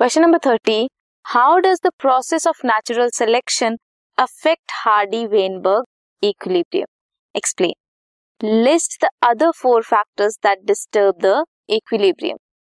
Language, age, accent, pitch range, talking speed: Hindi, 20-39, native, 215-285 Hz, 115 wpm